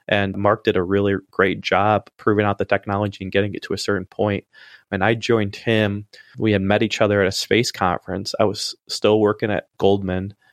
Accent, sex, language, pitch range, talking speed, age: American, male, English, 95-105 Hz, 210 wpm, 30-49